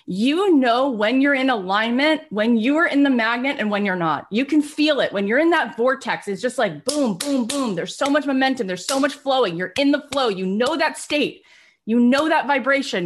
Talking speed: 235 wpm